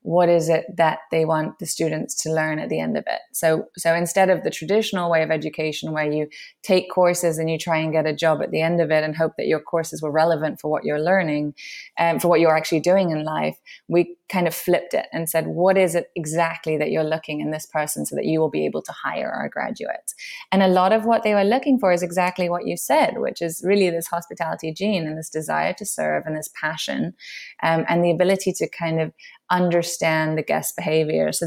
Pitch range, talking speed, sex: 155-175 Hz, 240 wpm, female